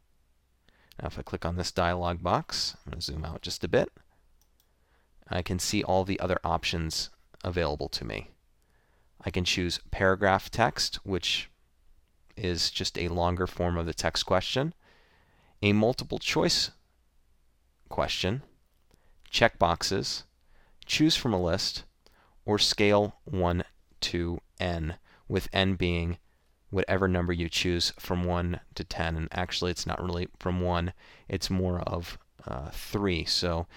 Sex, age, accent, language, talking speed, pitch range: male, 30-49, American, English, 140 wpm, 80-95 Hz